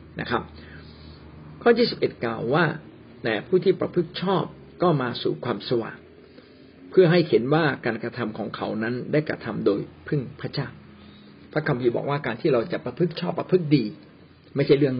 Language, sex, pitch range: Thai, male, 100-155 Hz